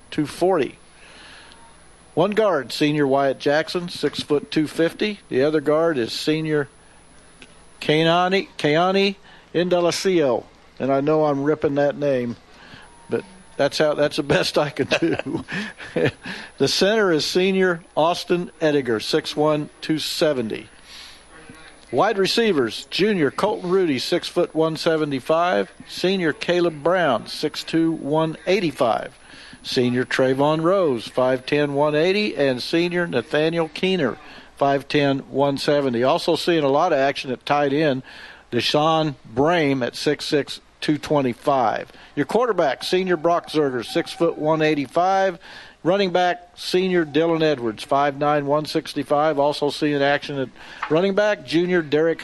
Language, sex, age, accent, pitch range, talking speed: English, male, 50-69, American, 140-170 Hz, 120 wpm